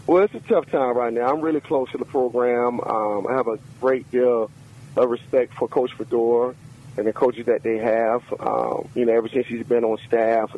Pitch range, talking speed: 115-135 Hz, 220 wpm